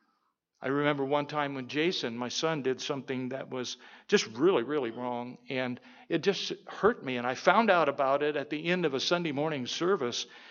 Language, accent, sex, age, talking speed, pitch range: English, American, male, 50-69, 200 wpm, 130-155 Hz